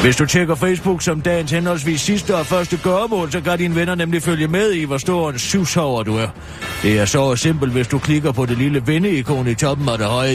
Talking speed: 240 wpm